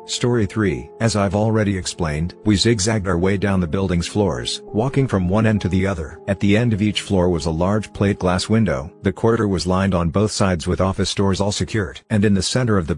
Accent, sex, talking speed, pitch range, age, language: American, male, 235 wpm, 90-105 Hz, 50-69, English